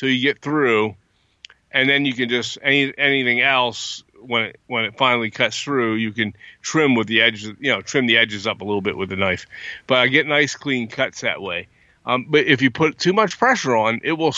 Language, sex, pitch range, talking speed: English, male, 115-155 Hz, 225 wpm